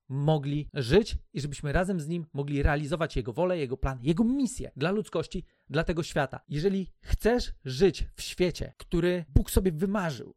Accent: native